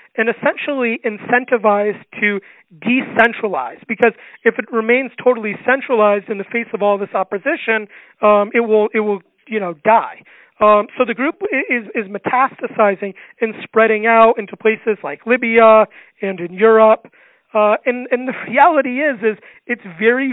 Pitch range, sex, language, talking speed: 210-245 Hz, male, English, 155 wpm